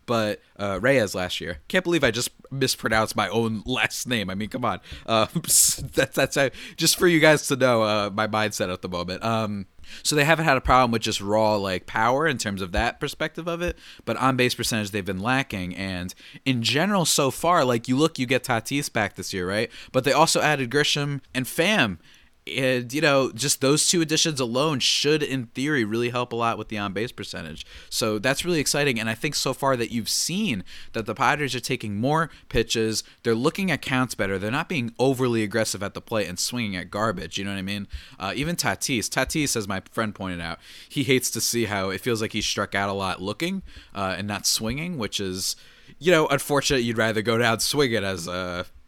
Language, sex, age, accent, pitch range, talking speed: English, male, 20-39, American, 100-140 Hz, 225 wpm